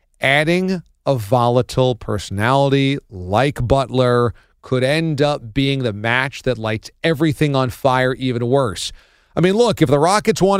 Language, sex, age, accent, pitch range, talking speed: English, male, 40-59, American, 130-175 Hz, 145 wpm